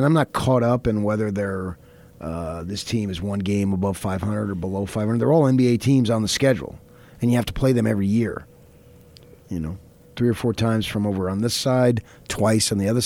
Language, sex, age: English, male, 30-49